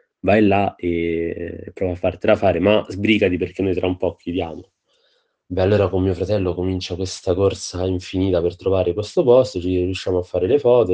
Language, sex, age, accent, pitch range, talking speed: Italian, male, 30-49, native, 90-115 Hz, 185 wpm